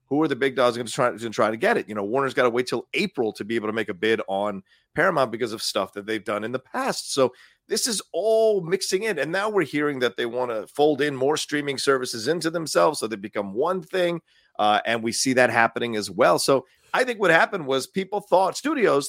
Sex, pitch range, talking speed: male, 115-160 Hz, 260 wpm